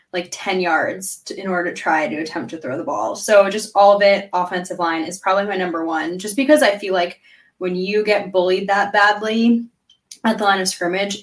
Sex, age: female, 10-29